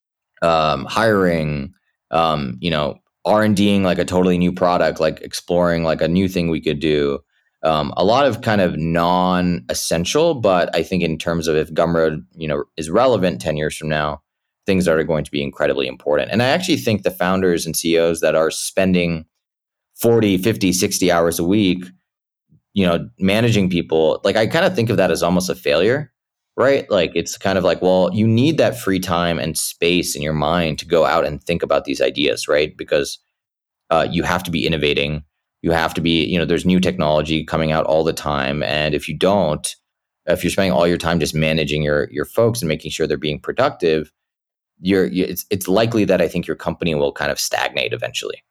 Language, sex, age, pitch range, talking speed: English, male, 20-39, 80-90 Hz, 205 wpm